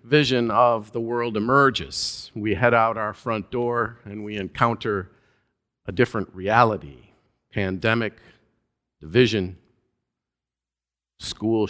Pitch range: 100-125 Hz